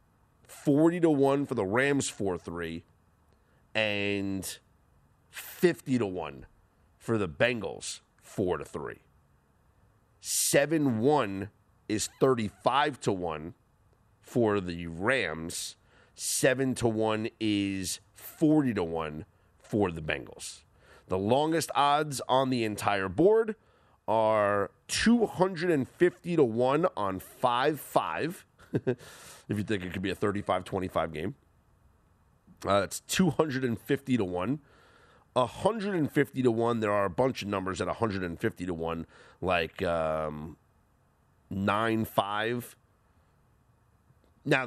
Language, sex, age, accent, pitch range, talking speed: English, male, 30-49, American, 95-130 Hz, 110 wpm